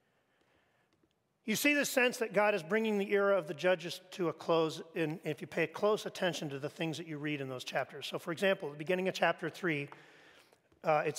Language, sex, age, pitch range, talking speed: English, male, 40-59, 175-250 Hz, 210 wpm